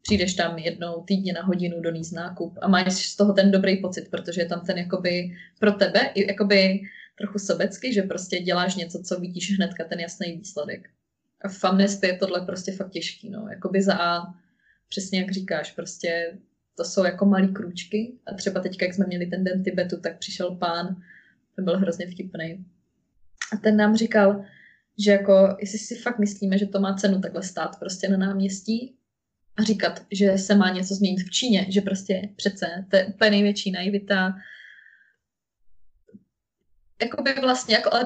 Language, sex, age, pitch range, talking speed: Slovak, female, 20-39, 180-200 Hz, 170 wpm